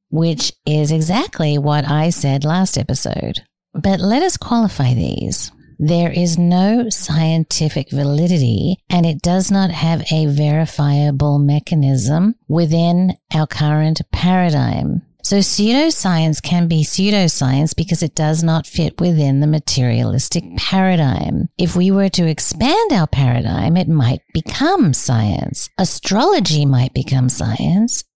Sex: female